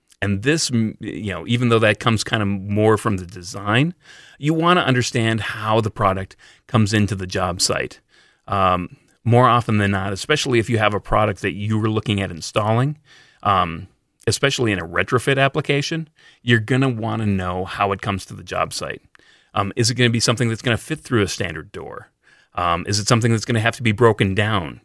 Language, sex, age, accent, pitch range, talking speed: English, male, 30-49, American, 95-115 Hz, 215 wpm